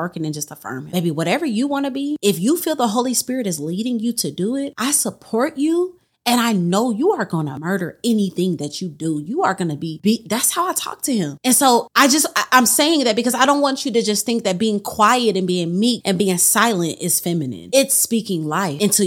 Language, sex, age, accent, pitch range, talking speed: English, female, 30-49, American, 175-245 Hz, 255 wpm